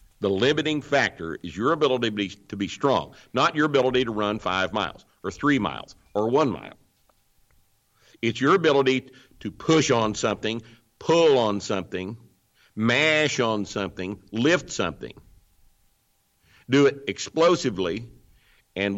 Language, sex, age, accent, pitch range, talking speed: English, male, 60-79, American, 95-130 Hz, 135 wpm